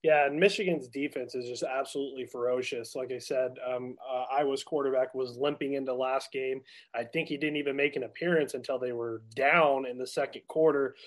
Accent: American